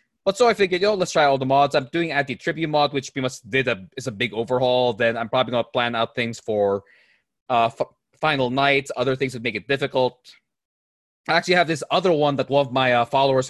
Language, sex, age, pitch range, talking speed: English, male, 20-39, 130-195 Hz, 245 wpm